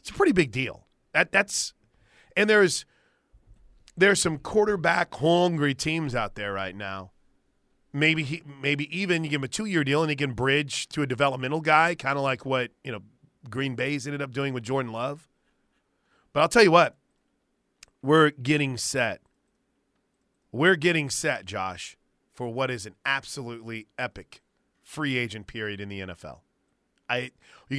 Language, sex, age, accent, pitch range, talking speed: English, male, 30-49, American, 120-155 Hz, 165 wpm